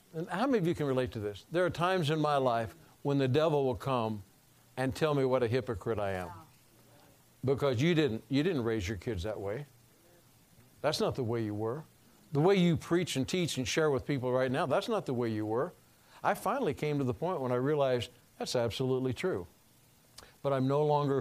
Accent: American